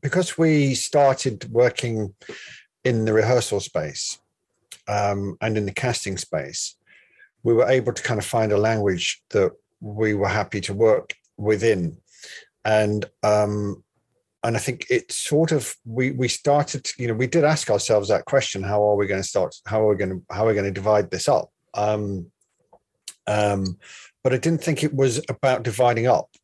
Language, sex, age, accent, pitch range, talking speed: English, male, 50-69, British, 105-125 Hz, 180 wpm